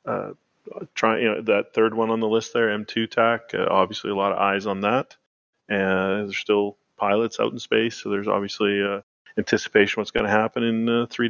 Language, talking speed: English, 220 wpm